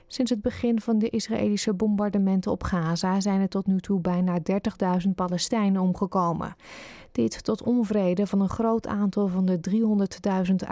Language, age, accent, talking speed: Dutch, 30-49, Dutch, 155 wpm